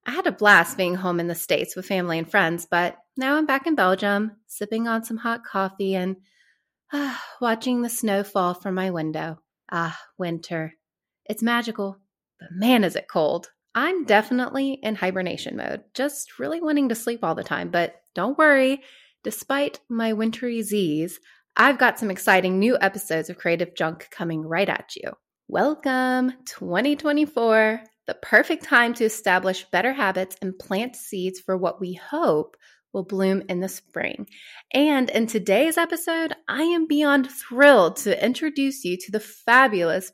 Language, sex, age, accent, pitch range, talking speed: English, female, 20-39, American, 185-255 Hz, 165 wpm